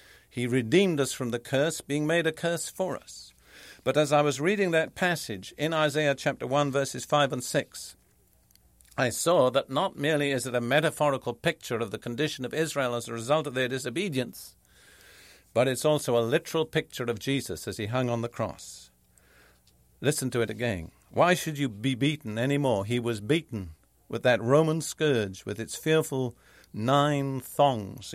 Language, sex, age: English, male, 50-69